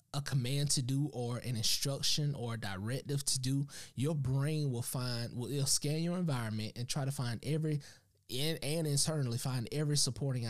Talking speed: 175 wpm